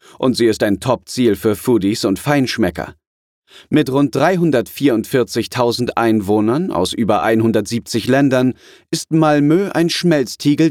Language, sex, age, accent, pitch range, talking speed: German, male, 30-49, German, 110-145 Hz, 120 wpm